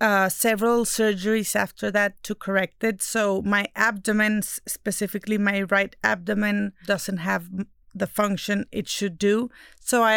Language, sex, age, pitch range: English, female, 30-49, 200-230 Hz